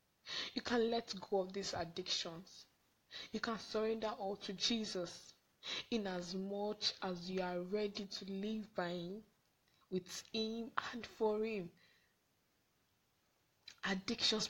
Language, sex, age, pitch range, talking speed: English, female, 10-29, 185-215 Hz, 125 wpm